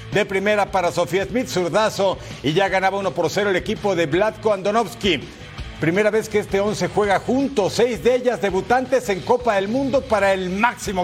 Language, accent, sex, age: Spanish, Mexican, male, 50-69